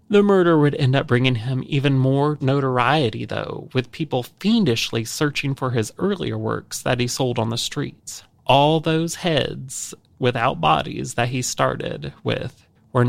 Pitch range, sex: 120-155 Hz, male